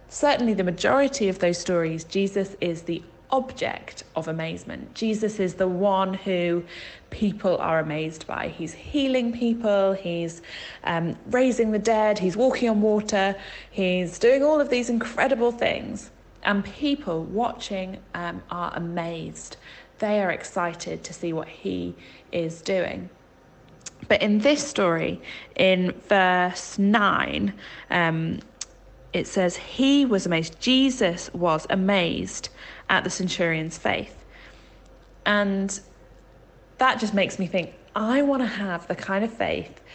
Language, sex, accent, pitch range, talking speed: English, female, British, 170-215 Hz, 130 wpm